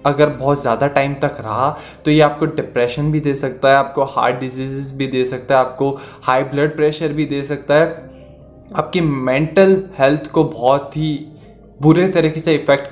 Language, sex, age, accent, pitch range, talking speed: Hindi, male, 20-39, native, 140-185 Hz, 180 wpm